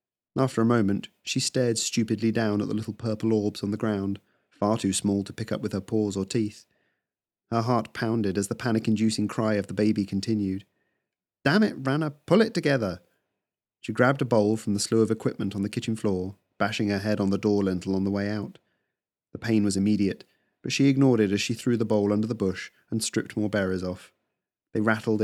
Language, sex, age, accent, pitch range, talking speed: English, male, 30-49, British, 100-125 Hz, 215 wpm